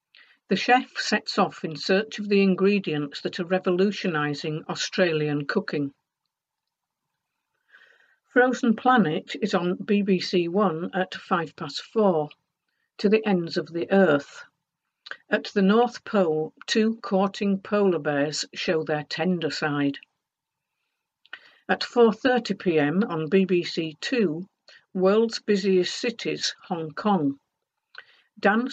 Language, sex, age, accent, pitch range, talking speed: English, female, 50-69, British, 165-215 Hz, 110 wpm